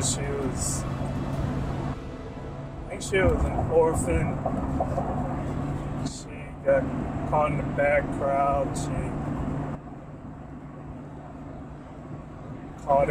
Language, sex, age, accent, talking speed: English, male, 30-49, American, 80 wpm